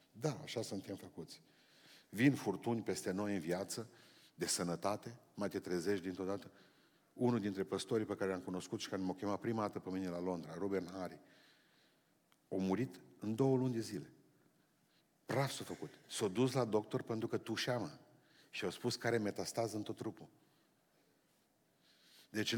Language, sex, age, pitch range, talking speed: Romanian, male, 50-69, 100-130 Hz, 165 wpm